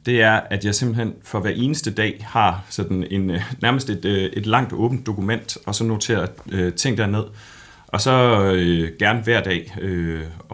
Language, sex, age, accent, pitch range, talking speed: Danish, male, 30-49, native, 90-110 Hz, 170 wpm